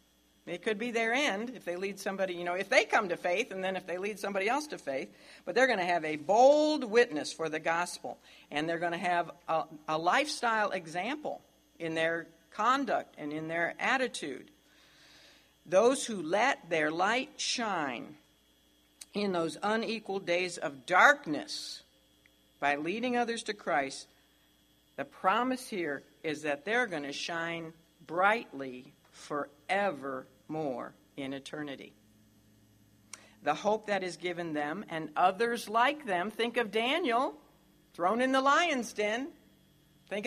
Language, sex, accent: English, female, American